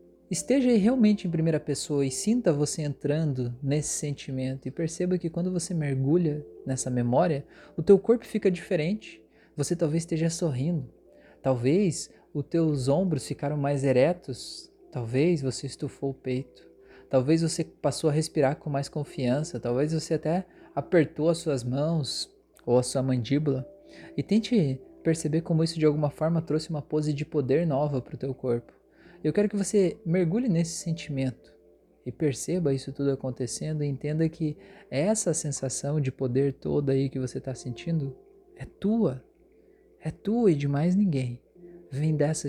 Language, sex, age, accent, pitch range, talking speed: Portuguese, male, 20-39, Brazilian, 135-175 Hz, 160 wpm